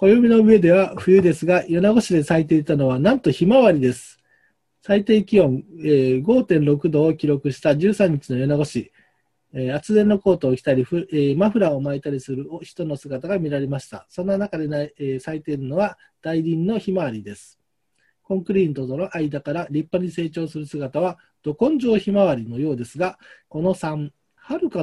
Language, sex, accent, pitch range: Japanese, male, native, 140-190 Hz